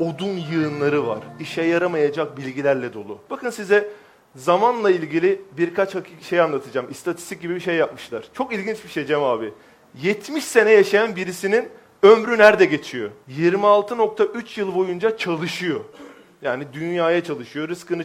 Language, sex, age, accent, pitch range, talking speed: Turkish, male, 40-59, native, 160-215 Hz, 135 wpm